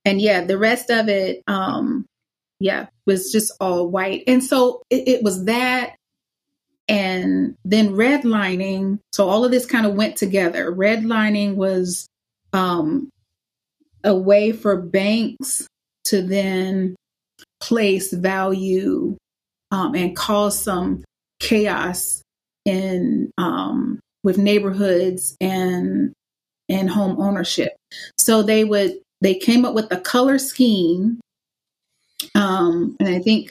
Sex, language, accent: female, English, American